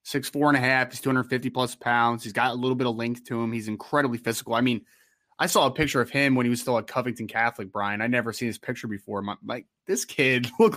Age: 20-39